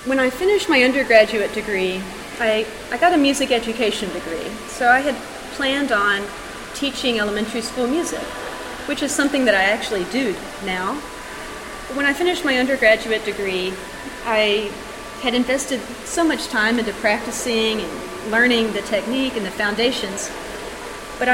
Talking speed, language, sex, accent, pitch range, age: 145 wpm, English, female, American, 210-260 Hz, 30-49